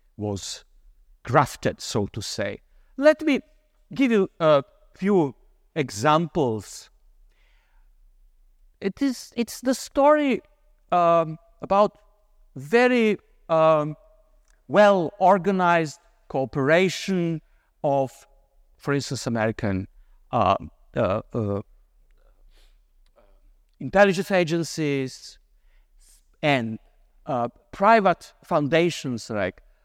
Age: 50-69